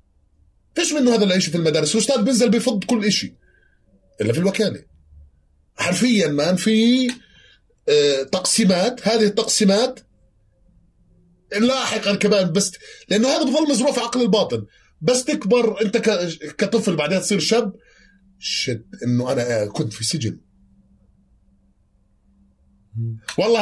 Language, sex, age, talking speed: Arabic, male, 30-49, 115 wpm